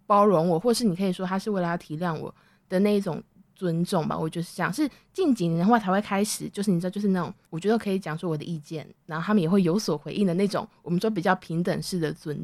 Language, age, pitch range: Chinese, 20-39, 170-205 Hz